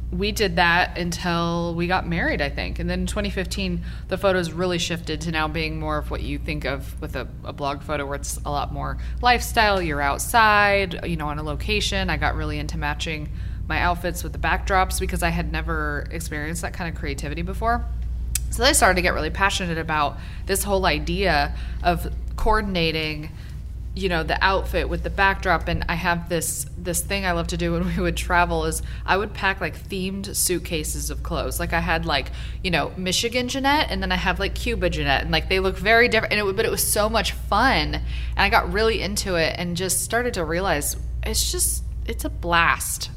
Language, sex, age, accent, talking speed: English, female, 20-39, American, 215 wpm